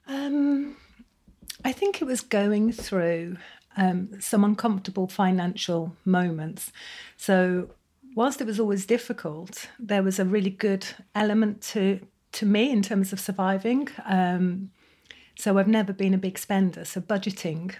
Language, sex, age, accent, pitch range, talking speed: English, female, 40-59, British, 180-210 Hz, 140 wpm